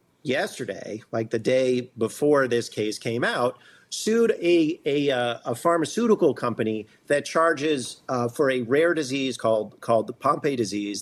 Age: 40-59